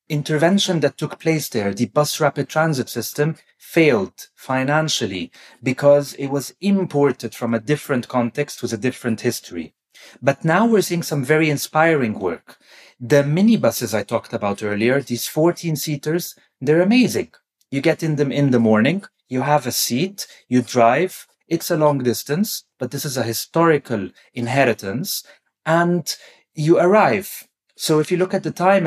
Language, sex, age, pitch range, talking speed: English, male, 30-49, 120-160 Hz, 155 wpm